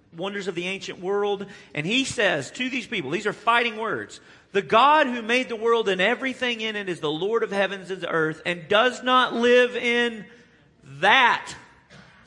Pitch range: 155-235 Hz